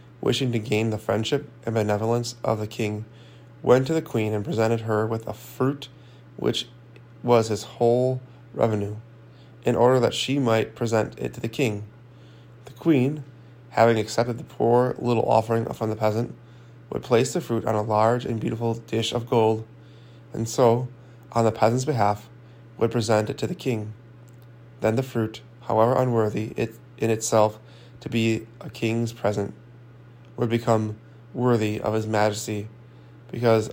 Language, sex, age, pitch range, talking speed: English, male, 20-39, 110-120 Hz, 160 wpm